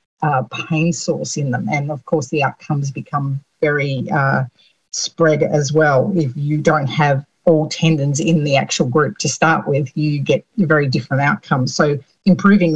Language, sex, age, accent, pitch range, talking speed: English, female, 50-69, Australian, 150-180 Hz, 170 wpm